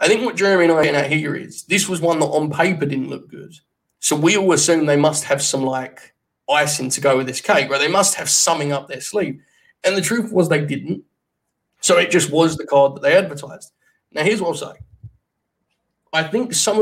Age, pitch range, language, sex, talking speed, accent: 20-39, 135-165 Hz, English, male, 230 wpm, British